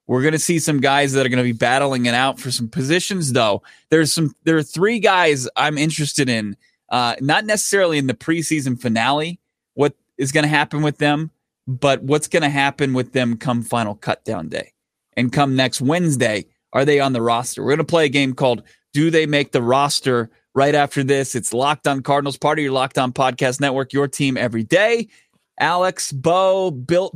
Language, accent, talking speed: English, American, 210 wpm